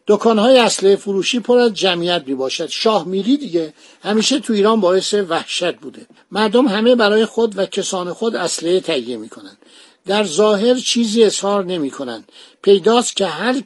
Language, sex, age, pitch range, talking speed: Persian, male, 60-79, 185-230 Hz, 150 wpm